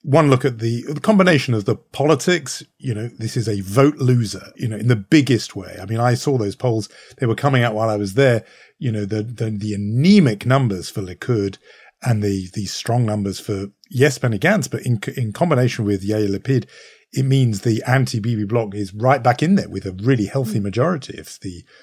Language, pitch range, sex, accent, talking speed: English, 105-140 Hz, male, British, 215 wpm